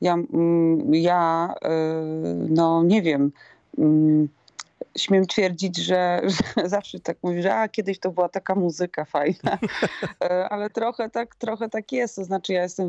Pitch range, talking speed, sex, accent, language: 155-190 Hz, 140 wpm, female, native, Polish